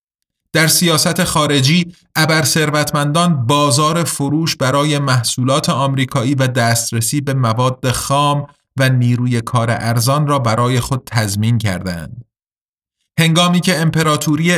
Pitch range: 120-155 Hz